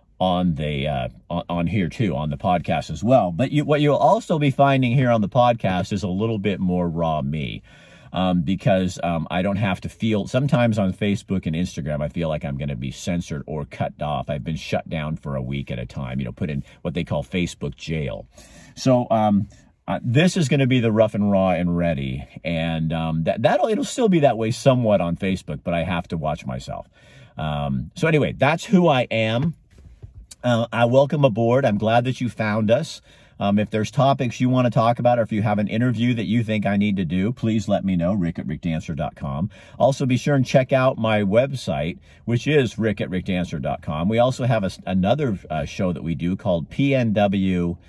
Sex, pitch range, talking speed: male, 85-120 Hz, 220 wpm